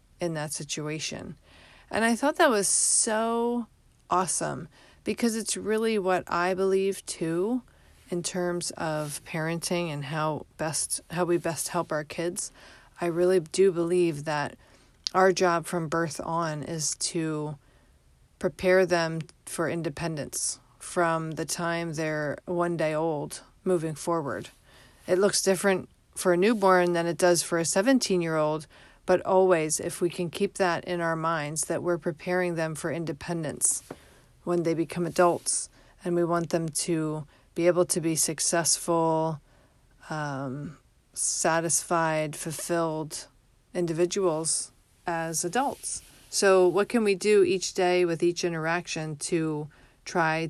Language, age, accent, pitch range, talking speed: English, 40-59, American, 155-180 Hz, 140 wpm